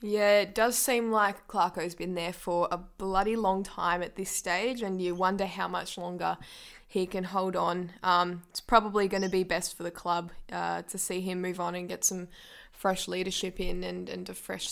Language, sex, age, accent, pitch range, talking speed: English, female, 10-29, Australian, 175-195 Hz, 210 wpm